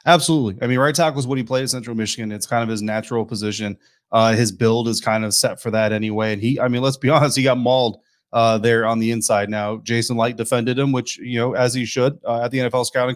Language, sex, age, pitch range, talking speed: English, male, 30-49, 115-135 Hz, 270 wpm